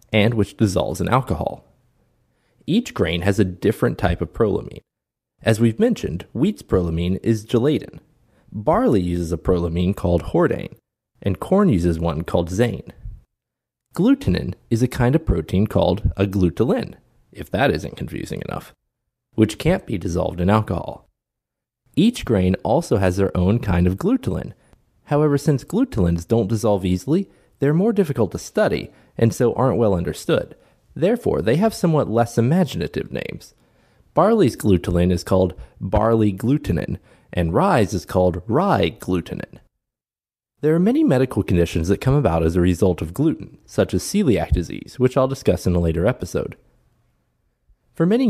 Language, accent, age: English, American, 30-49